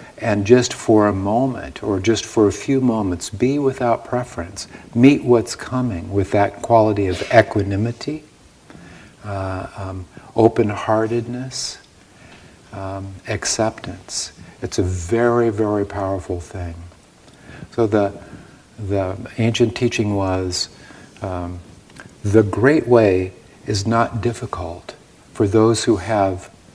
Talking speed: 110 wpm